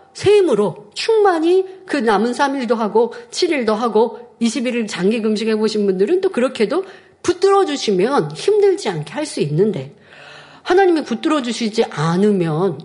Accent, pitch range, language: native, 185-255 Hz, Korean